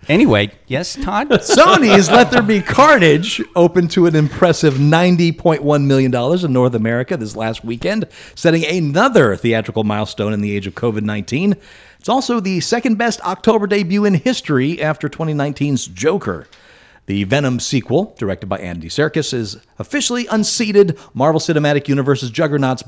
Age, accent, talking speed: 40-59, American, 145 wpm